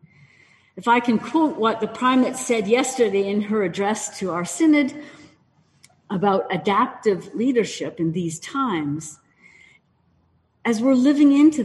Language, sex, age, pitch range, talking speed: English, female, 50-69, 165-260 Hz, 130 wpm